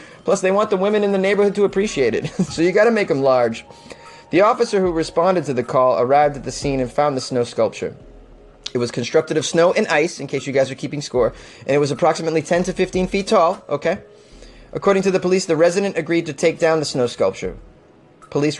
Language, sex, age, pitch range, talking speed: English, male, 30-49, 130-185 Hz, 230 wpm